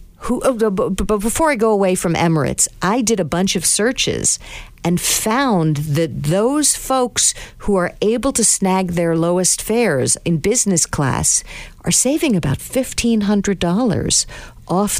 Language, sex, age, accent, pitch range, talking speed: English, female, 50-69, American, 165-230 Hz, 135 wpm